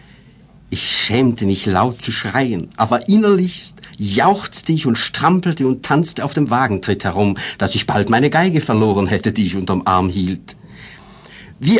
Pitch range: 110-155 Hz